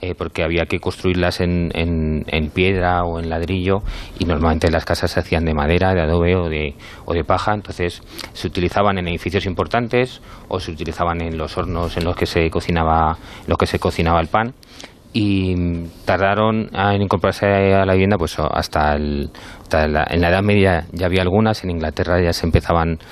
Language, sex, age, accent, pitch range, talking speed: Spanish, male, 30-49, Spanish, 85-95 Hz, 185 wpm